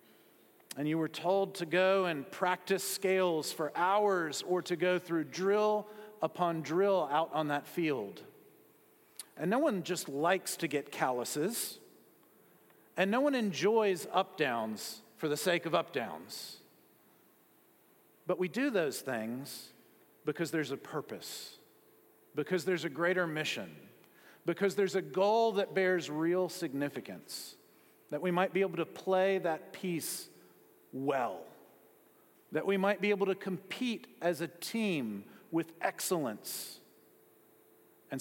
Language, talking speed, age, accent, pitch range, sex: English, 135 wpm, 40-59, American, 155-195 Hz, male